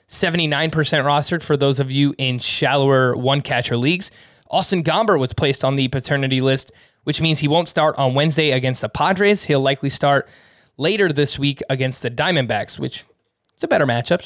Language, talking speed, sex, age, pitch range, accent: English, 175 wpm, male, 20-39, 135-160 Hz, American